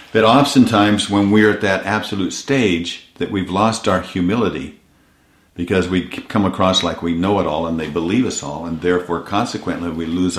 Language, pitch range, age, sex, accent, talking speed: English, 85-105 Hz, 50-69, male, American, 185 wpm